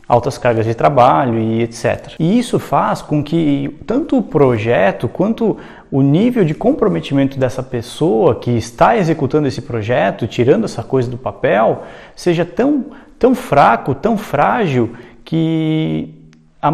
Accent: Brazilian